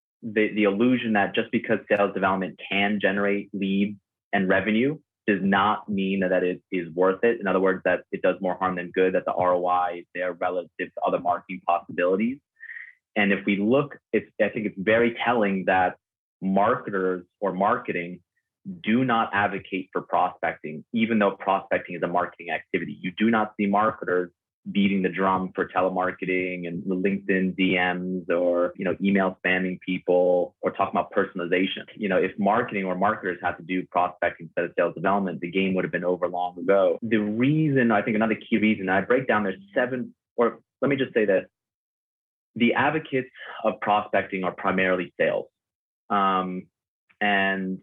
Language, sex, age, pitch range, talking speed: English, male, 30-49, 90-105 Hz, 180 wpm